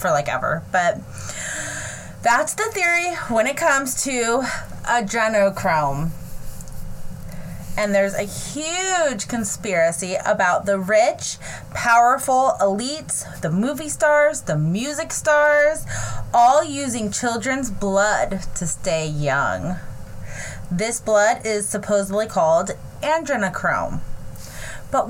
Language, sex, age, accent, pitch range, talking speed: English, female, 30-49, American, 195-295 Hz, 100 wpm